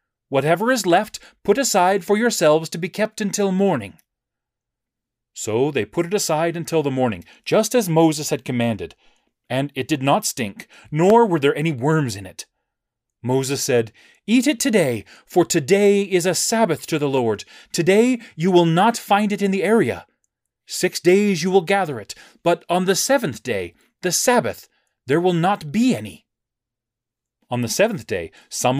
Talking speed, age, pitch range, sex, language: 170 wpm, 30-49, 120-180 Hz, male, English